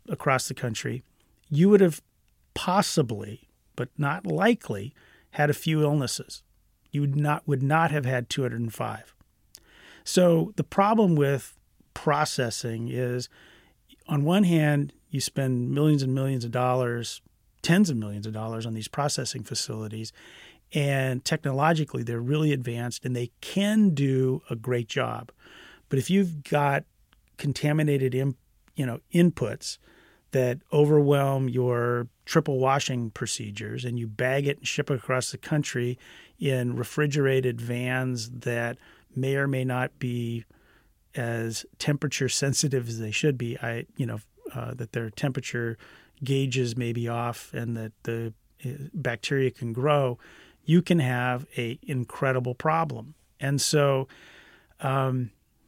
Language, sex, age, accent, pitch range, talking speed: English, male, 40-59, American, 120-145 Hz, 135 wpm